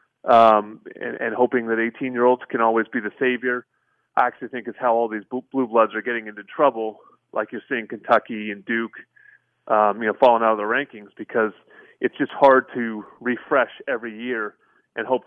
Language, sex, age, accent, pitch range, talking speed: English, male, 30-49, American, 115-135 Hz, 195 wpm